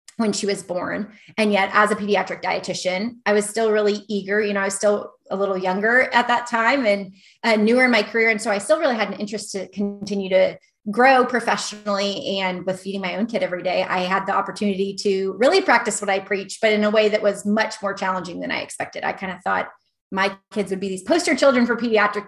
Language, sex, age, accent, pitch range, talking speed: English, female, 30-49, American, 190-220 Hz, 235 wpm